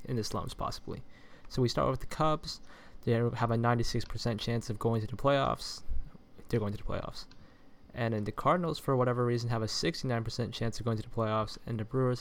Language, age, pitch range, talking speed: English, 20-39, 110-125 Hz, 215 wpm